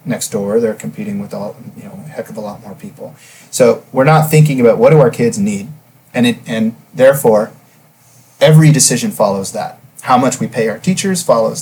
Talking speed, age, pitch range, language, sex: 185 wpm, 30-49, 120-185 Hz, English, male